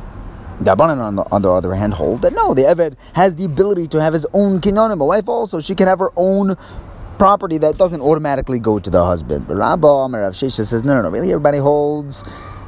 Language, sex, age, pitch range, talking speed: English, male, 30-49, 100-170 Hz, 225 wpm